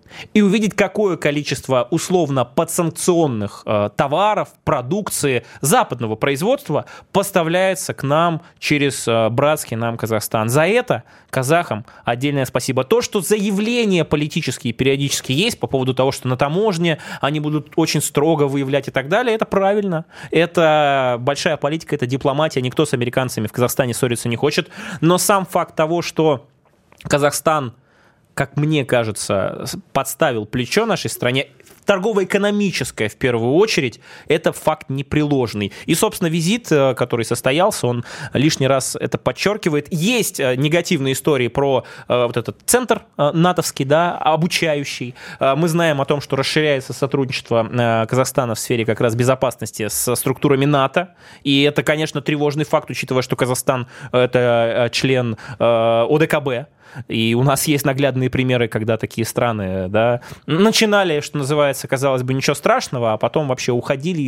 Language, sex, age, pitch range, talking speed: Russian, male, 20-39, 125-165 Hz, 140 wpm